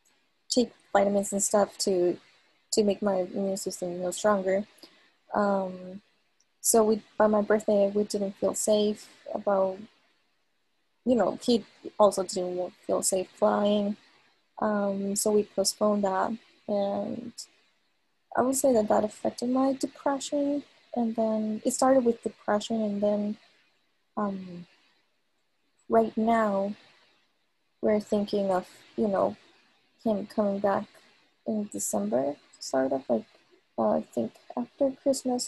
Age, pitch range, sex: 20-39, 200-230 Hz, female